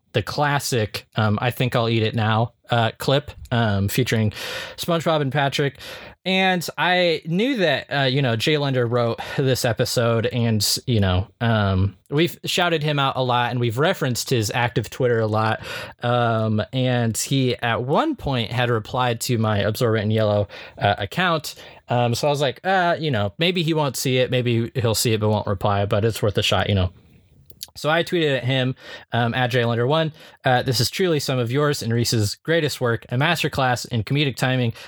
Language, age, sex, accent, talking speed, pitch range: English, 20-39, male, American, 190 wpm, 110-140 Hz